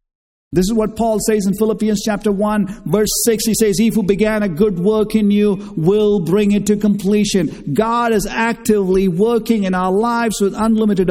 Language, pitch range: English, 190-235 Hz